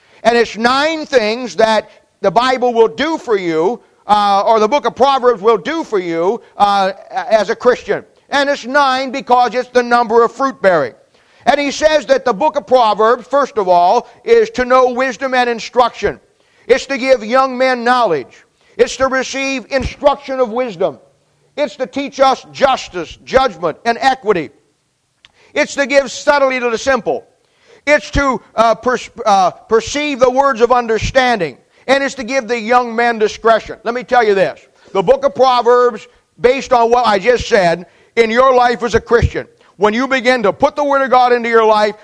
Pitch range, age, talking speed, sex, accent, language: 220-270 Hz, 50-69, 185 wpm, male, American, English